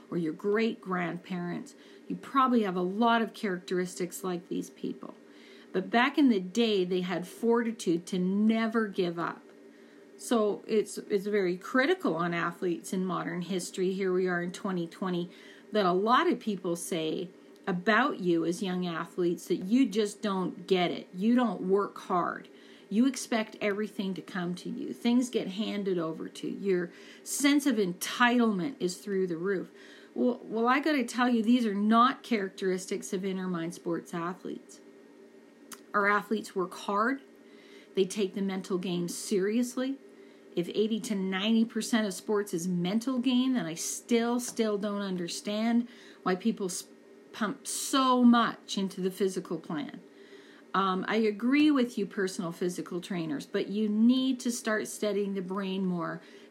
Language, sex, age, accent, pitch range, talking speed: English, female, 40-59, American, 185-230 Hz, 160 wpm